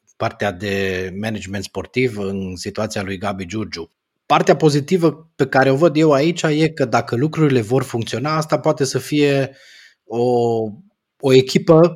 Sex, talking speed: male, 150 wpm